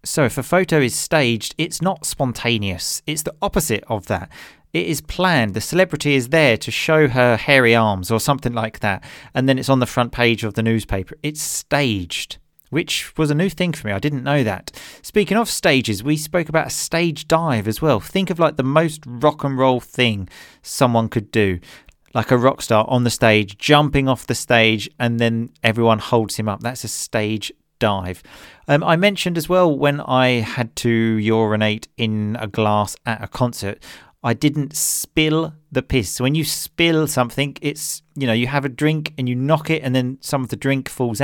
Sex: male